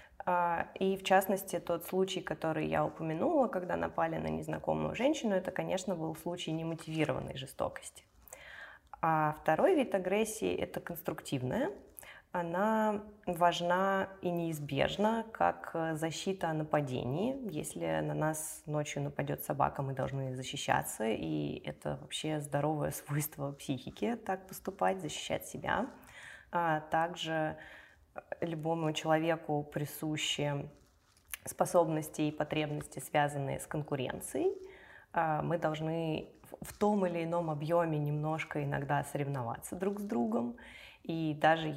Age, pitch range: 20-39, 145-175 Hz